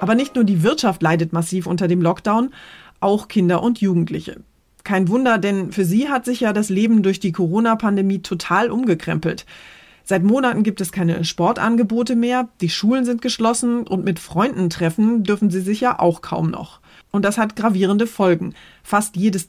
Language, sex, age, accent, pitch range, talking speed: German, female, 30-49, German, 165-215 Hz, 180 wpm